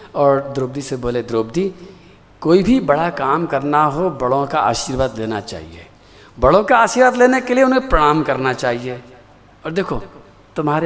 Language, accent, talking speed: Hindi, native, 160 wpm